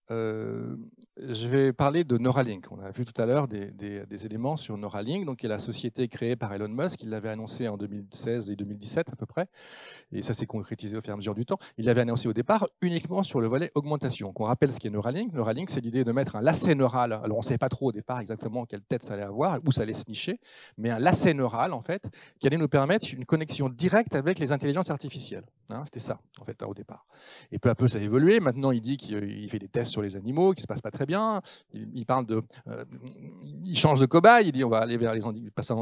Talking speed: 260 wpm